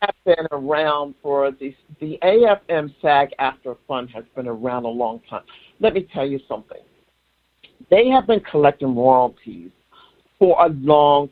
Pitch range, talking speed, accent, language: 130-160 Hz, 155 wpm, American, English